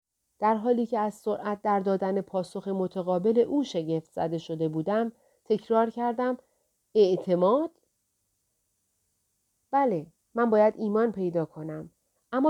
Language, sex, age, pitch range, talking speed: Persian, female, 40-59, 185-240 Hz, 115 wpm